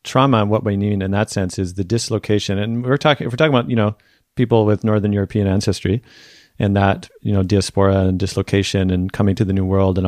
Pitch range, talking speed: 100-120 Hz, 225 wpm